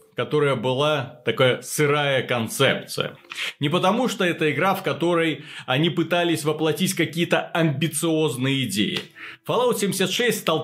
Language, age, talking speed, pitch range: Russian, 30-49, 120 wpm, 130-170 Hz